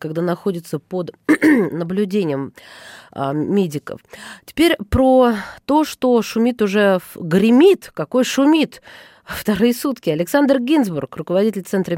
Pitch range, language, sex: 175-250 Hz, Russian, female